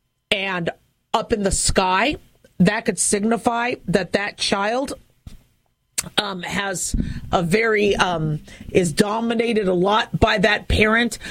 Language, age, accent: English, 40-59, American